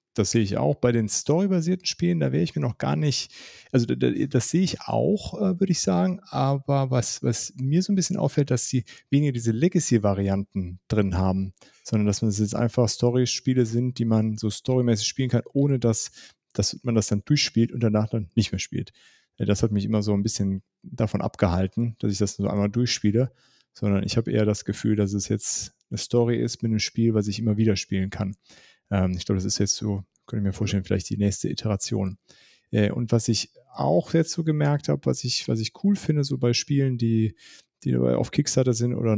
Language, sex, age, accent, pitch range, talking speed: German, male, 30-49, German, 105-125 Hz, 215 wpm